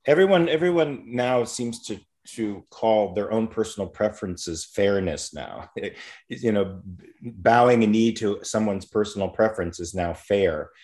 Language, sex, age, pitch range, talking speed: English, male, 30-49, 90-110 Hz, 150 wpm